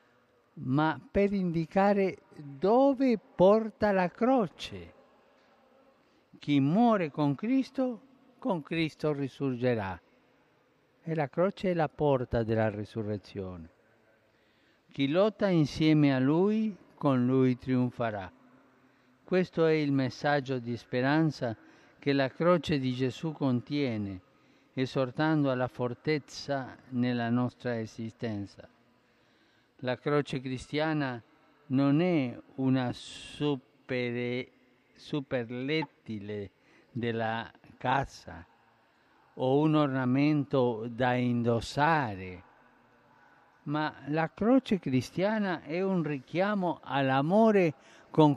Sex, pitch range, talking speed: male, 125-165 Hz, 90 wpm